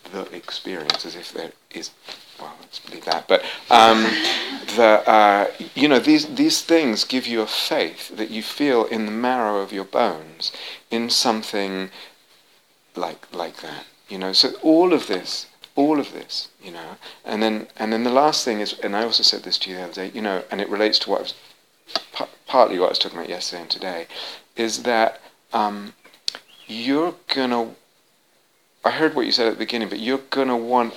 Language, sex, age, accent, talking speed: English, male, 40-59, British, 200 wpm